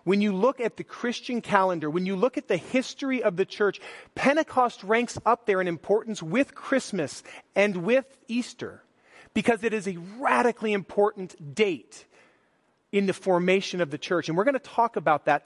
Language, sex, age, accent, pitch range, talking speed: English, male, 30-49, American, 175-230 Hz, 185 wpm